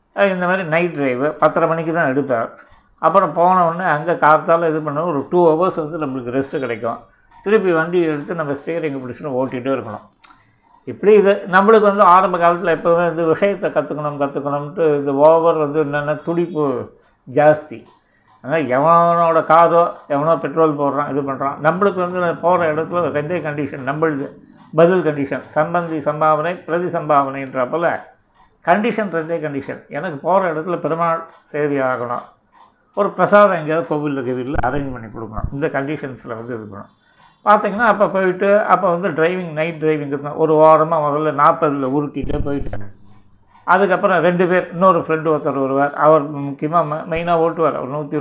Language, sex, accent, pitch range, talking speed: Tamil, male, native, 145-170 Hz, 145 wpm